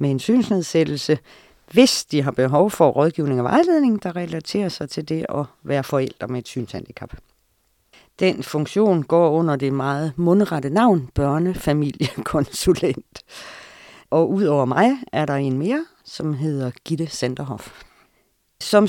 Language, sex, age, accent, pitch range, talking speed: Danish, female, 40-59, native, 130-190 Hz, 135 wpm